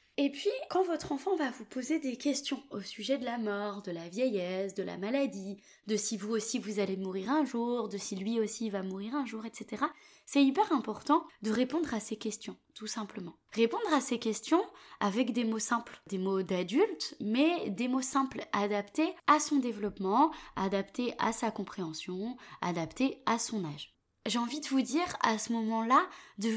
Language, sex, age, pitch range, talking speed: French, female, 20-39, 210-280 Hz, 190 wpm